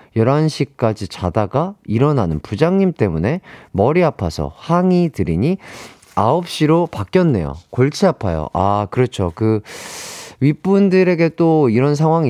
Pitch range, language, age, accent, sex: 100-170 Hz, Korean, 30-49, native, male